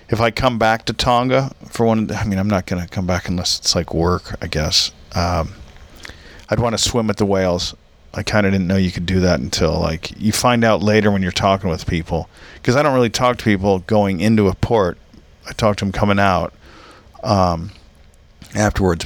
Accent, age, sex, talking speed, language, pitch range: American, 50-69, male, 215 wpm, English, 85-110 Hz